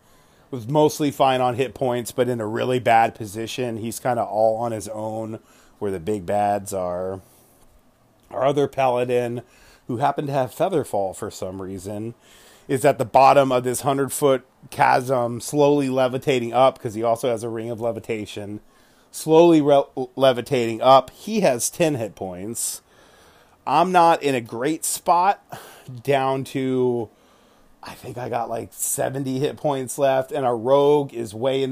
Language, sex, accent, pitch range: English, male, American, 110-135 Hz